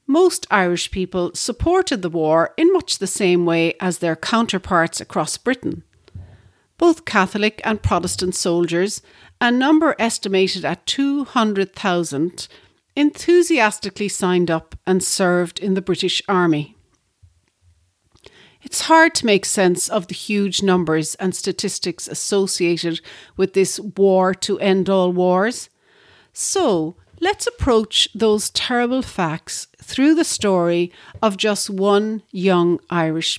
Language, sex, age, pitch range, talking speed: English, female, 60-79, 165-220 Hz, 120 wpm